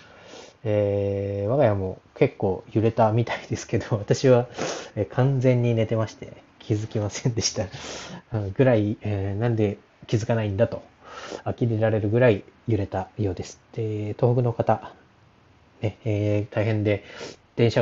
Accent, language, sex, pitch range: native, Japanese, male, 100-120 Hz